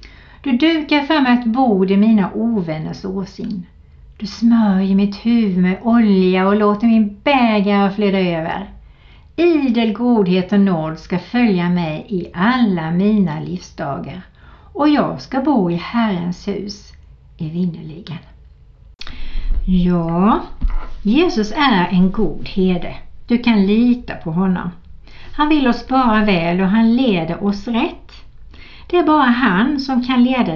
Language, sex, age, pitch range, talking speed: Swedish, female, 60-79, 175-240 Hz, 135 wpm